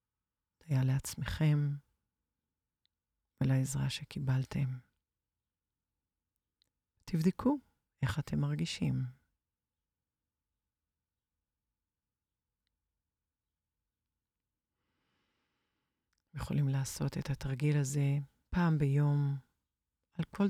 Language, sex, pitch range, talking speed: Hebrew, female, 125-150 Hz, 55 wpm